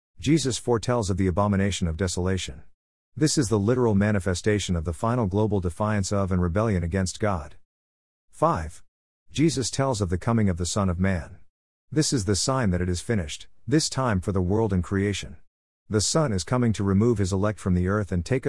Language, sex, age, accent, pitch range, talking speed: English, male, 50-69, American, 90-115 Hz, 200 wpm